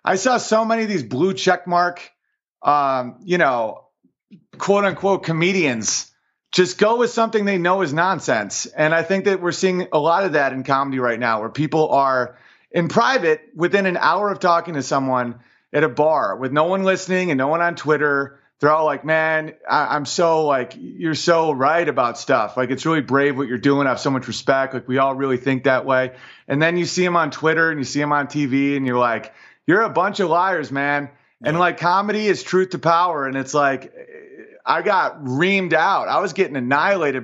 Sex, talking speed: male, 215 wpm